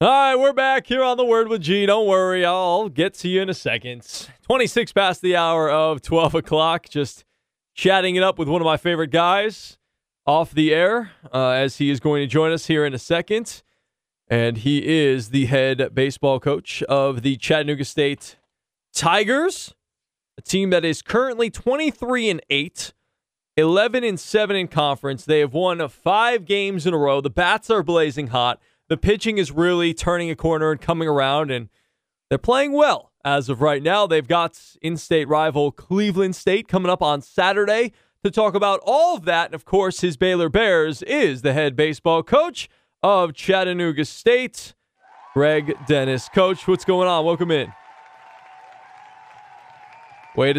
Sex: male